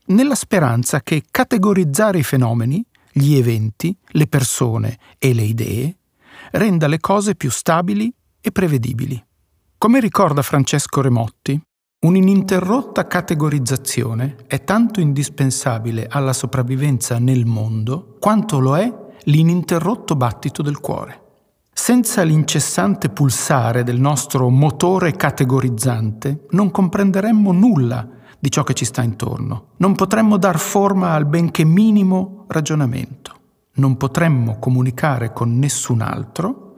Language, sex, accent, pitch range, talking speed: Italian, male, native, 125-185 Hz, 115 wpm